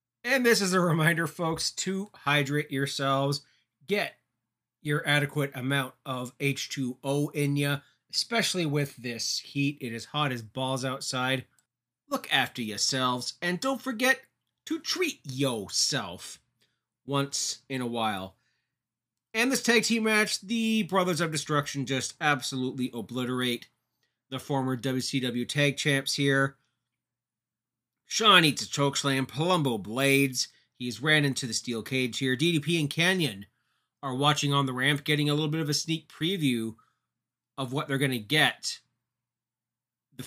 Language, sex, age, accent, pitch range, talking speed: English, male, 30-49, American, 125-160 Hz, 140 wpm